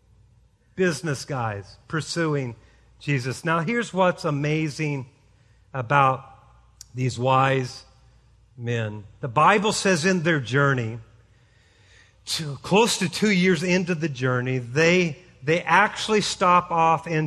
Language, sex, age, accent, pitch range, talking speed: English, male, 50-69, American, 155-230 Hz, 110 wpm